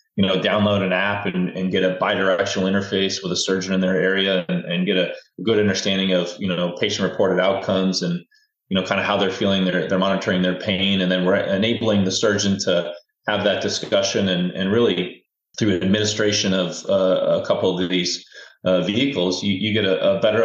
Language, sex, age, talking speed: English, male, 30-49, 205 wpm